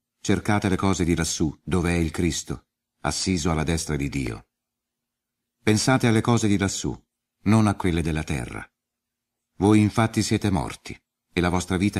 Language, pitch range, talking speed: Italian, 85-115 Hz, 160 wpm